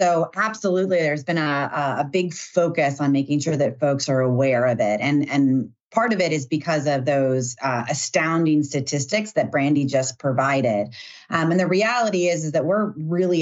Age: 30-49